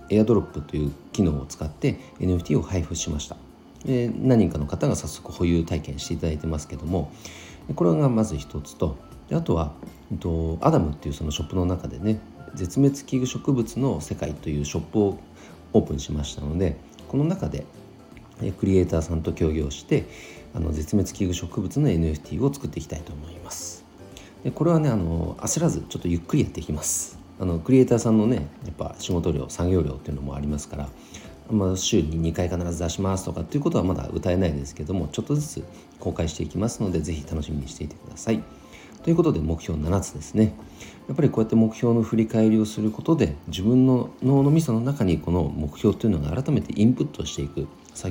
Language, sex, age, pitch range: Japanese, male, 40-59, 75-110 Hz